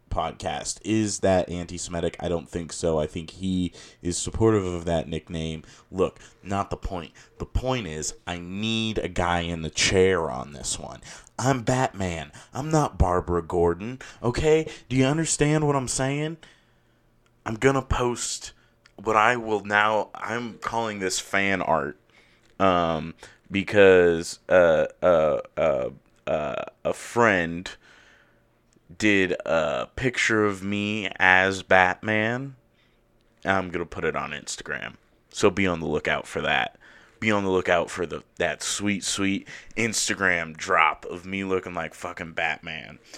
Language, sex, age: English, male, 30-49